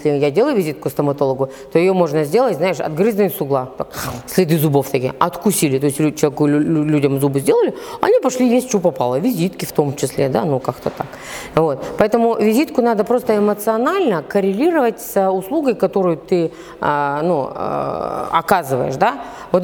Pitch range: 150-210 Hz